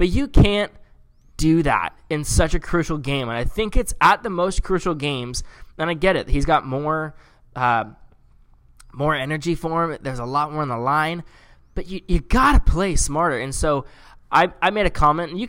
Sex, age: male, 10-29